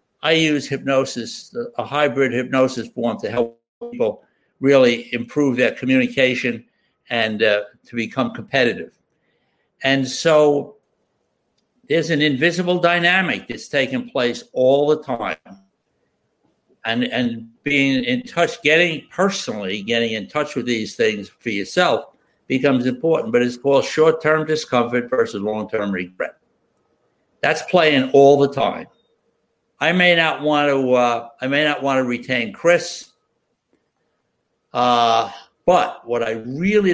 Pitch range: 120-155 Hz